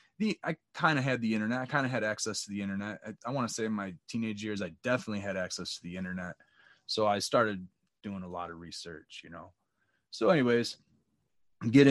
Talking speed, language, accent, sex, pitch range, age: 220 wpm, English, American, male, 100-120 Hz, 20-39